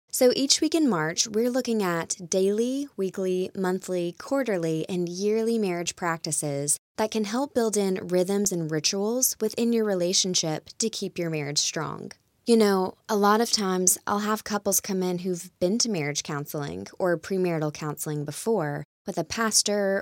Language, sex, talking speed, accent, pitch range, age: English, female, 165 wpm, American, 170-220 Hz, 20-39